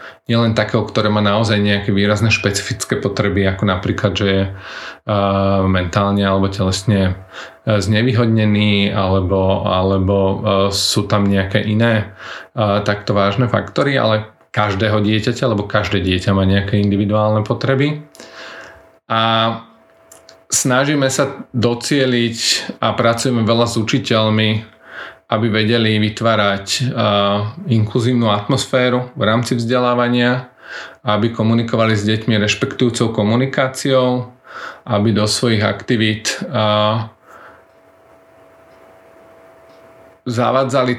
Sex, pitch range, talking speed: male, 100-120 Hz, 100 wpm